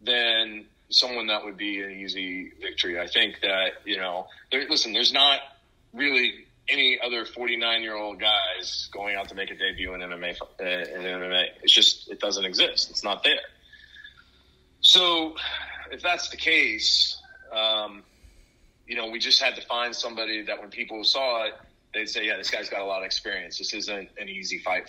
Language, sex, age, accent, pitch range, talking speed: English, male, 30-49, American, 95-120 Hz, 185 wpm